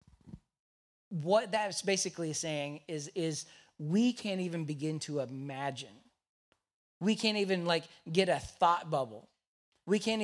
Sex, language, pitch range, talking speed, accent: male, English, 140-175 Hz, 130 wpm, American